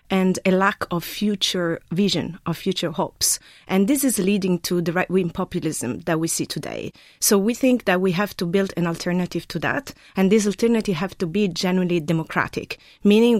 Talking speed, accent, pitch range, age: 190 wpm, French, 175-215 Hz, 30-49